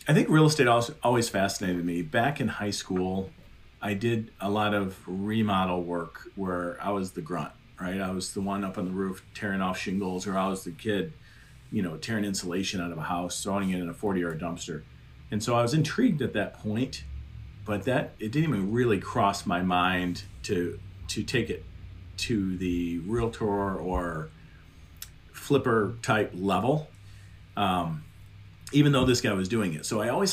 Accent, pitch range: American, 90-110 Hz